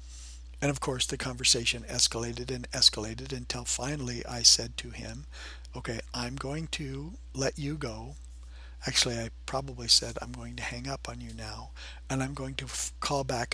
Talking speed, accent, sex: 175 wpm, American, male